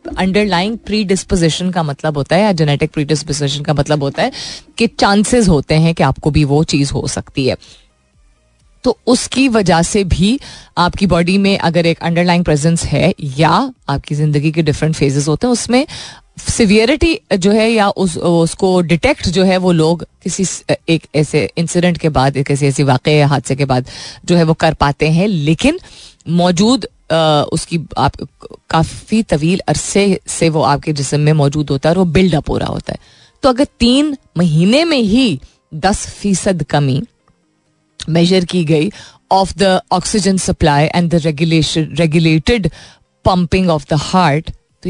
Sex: female